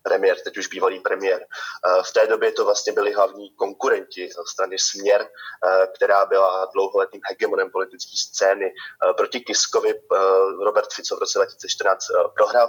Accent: native